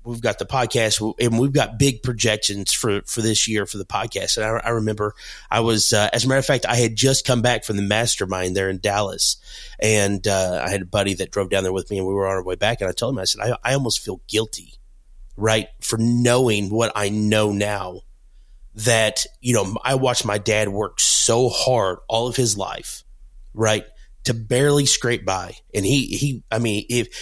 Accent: American